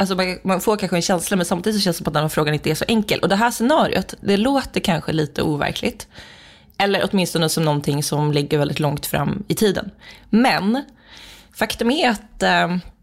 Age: 20-39